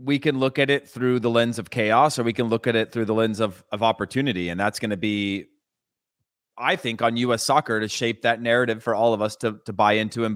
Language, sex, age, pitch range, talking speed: English, male, 30-49, 115-160 Hz, 260 wpm